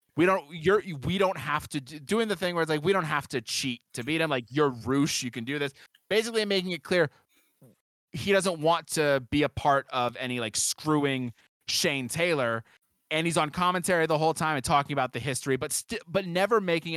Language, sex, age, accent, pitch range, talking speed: English, male, 20-39, American, 125-160 Hz, 225 wpm